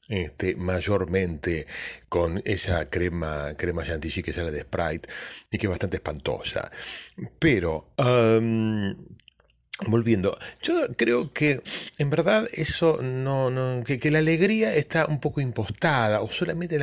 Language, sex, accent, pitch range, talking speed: Spanish, male, Argentinian, 95-135 Hz, 135 wpm